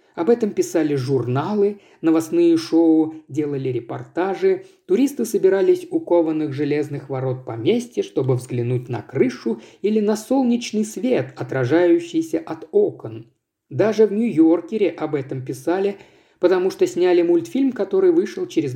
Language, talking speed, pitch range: Russian, 125 wpm, 145-235 Hz